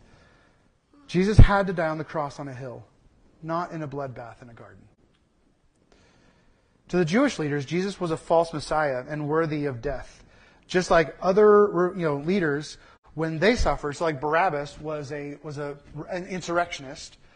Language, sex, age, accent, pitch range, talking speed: English, male, 30-49, American, 135-180 Hz, 165 wpm